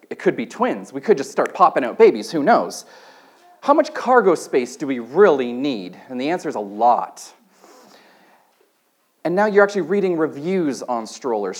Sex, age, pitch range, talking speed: male, 40-59, 160-225 Hz, 180 wpm